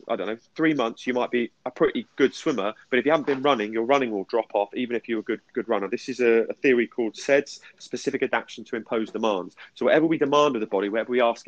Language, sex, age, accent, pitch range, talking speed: English, male, 30-49, British, 120-155 Hz, 270 wpm